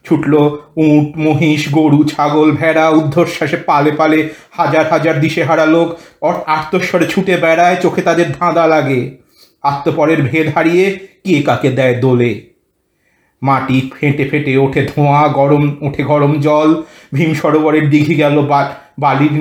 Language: Bengali